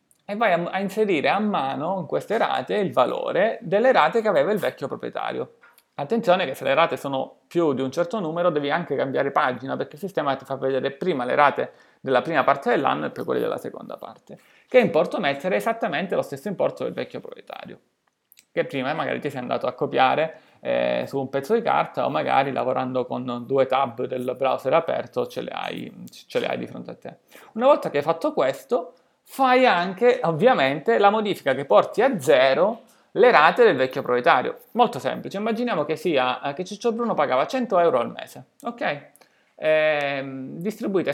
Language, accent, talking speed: Italian, native, 190 wpm